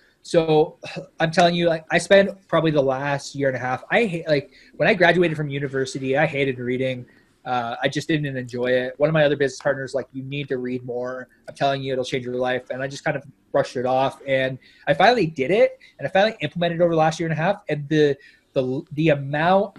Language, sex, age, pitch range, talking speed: English, male, 20-39, 130-165 Hz, 235 wpm